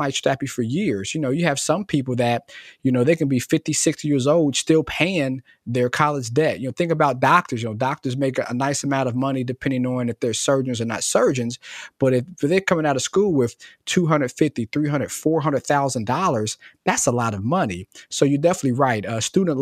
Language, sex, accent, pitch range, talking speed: English, male, American, 120-145 Hz, 215 wpm